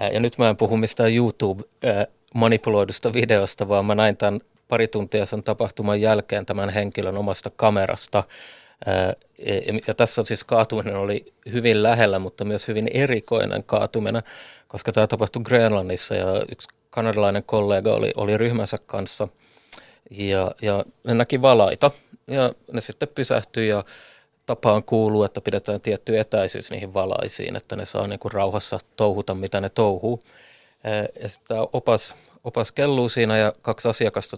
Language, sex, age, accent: Finnish, male, 30-49, native